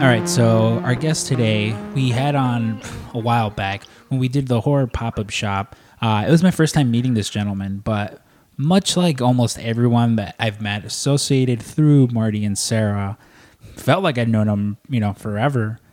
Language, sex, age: English, male, 20-39